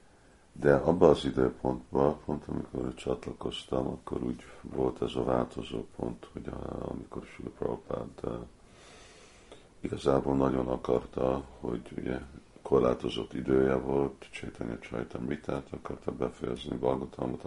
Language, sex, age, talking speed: Hungarian, male, 50-69, 115 wpm